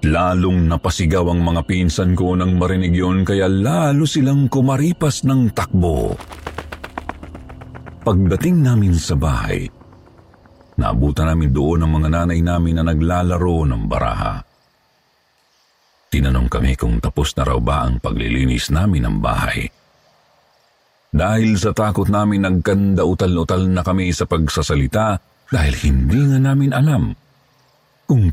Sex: male